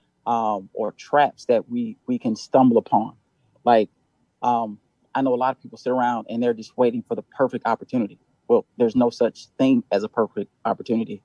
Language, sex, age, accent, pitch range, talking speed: English, male, 30-49, American, 110-140 Hz, 190 wpm